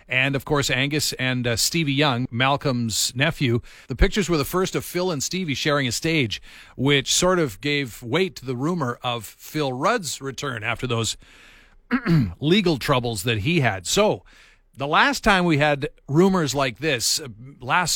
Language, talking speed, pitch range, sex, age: English, 175 wpm, 125-155 Hz, male, 40-59